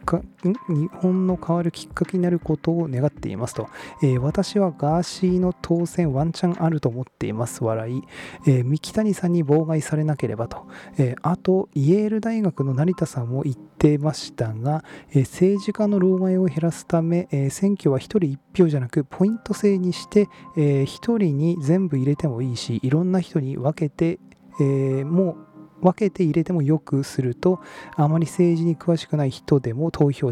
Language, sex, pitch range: Japanese, male, 130-170 Hz